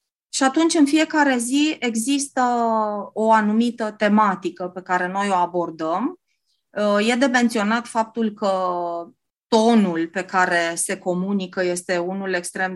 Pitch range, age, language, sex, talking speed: 180-225 Hz, 20-39, Romanian, female, 125 wpm